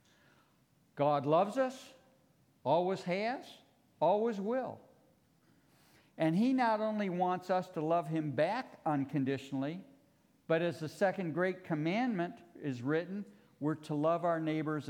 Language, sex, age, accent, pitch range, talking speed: English, male, 60-79, American, 145-190 Hz, 125 wpm